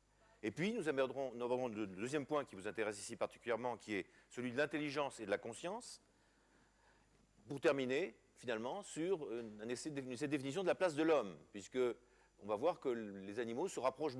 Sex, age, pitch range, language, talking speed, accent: male, 50-69, 130-170 Hz, French, 180 wpm, French